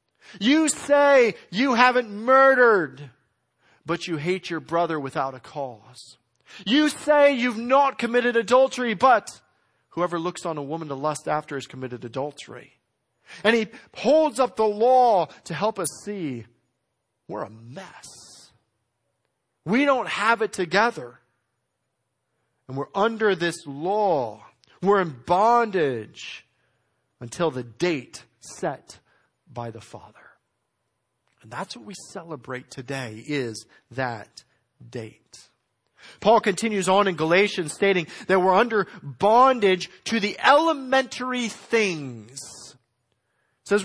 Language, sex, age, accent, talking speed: English, male, 40-59, American, 120 wpm